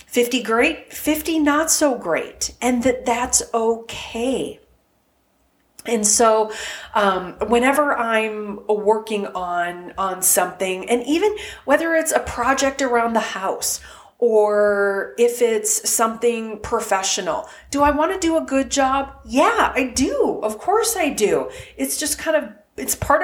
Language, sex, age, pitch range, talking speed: English, female, 30-49, 205-280 Hz, 140 wpm